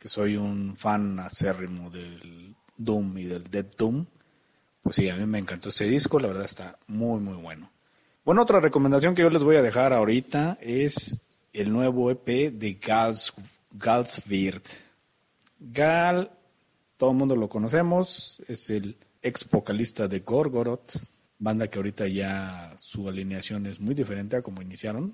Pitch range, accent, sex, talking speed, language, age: 100-135 Hz, Mexican, male, 160 wpm, Spanish, 40-59